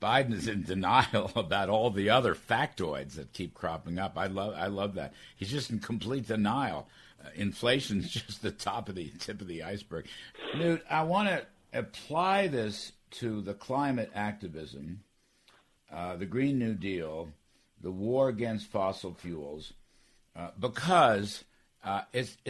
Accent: American